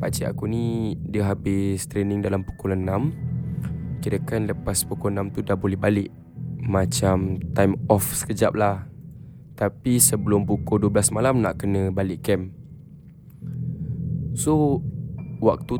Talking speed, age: 125 wpm, 10-29